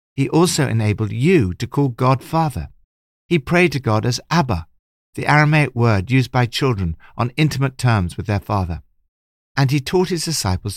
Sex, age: male, 60-79